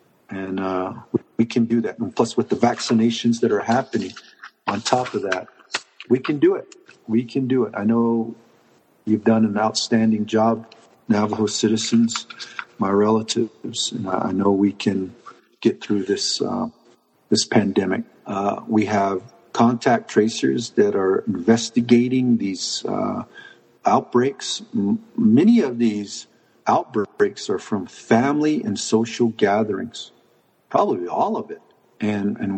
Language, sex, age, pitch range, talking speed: English, male, 50-69, 105-125 Hz, 135 wpm